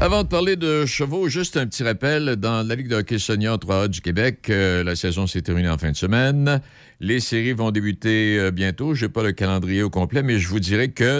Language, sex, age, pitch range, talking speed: French, male, 60-79, 85-120 Hz, 240 wpm